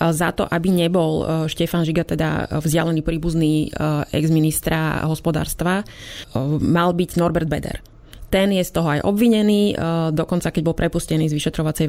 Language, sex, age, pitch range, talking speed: Slovak, female, 20-39, 155-180 Hz, 135 wpm